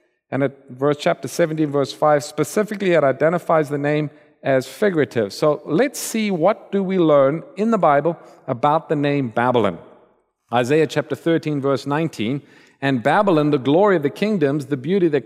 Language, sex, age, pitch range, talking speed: English, male, 50-69, 145-195 Hz, 170 wpm